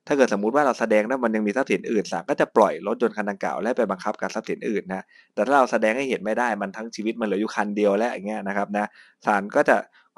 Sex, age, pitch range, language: male, 20-39, 95-115 Hz, Thai